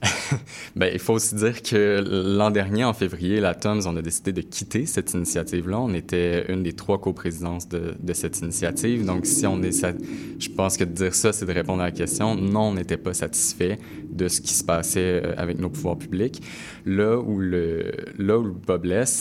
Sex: male